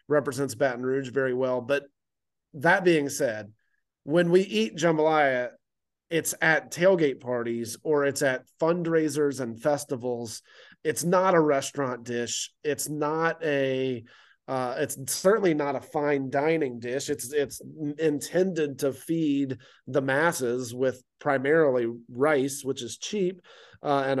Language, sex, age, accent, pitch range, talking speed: English, male, 30-49, American, 130-155 Hz, 135 wpm